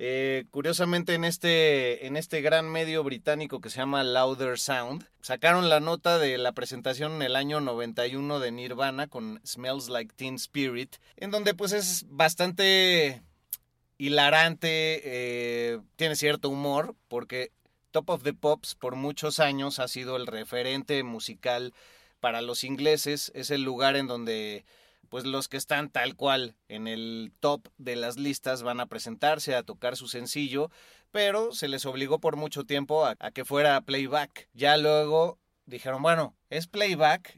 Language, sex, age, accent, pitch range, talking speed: Spanish, male, 30-49, Mexican, 120-150 Hz, 155 wpm